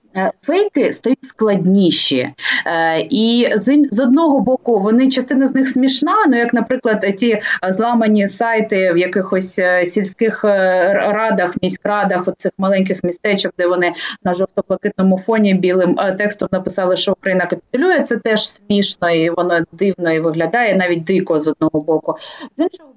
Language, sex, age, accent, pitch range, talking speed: Ukrainian, female, 20-39, native, 185-245 Hz, 135 wpm